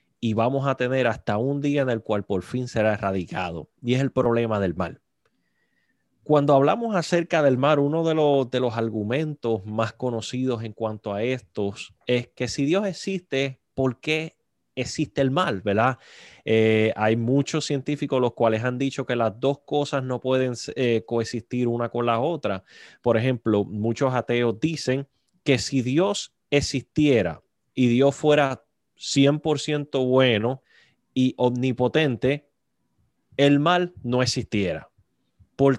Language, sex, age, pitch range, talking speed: Spanish, male, 20-39, 115-145 Hz, 150 wpm